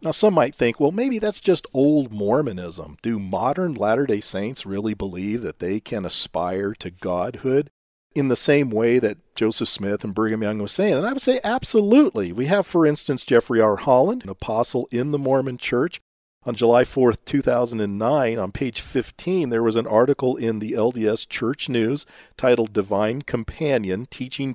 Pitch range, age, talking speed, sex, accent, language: 105-155 Hz, 40-59, 175 wpm, male, American, English